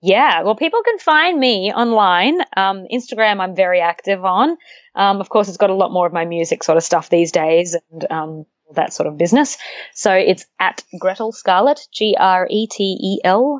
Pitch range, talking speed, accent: 175-245 Hz, 180 wpm, Australian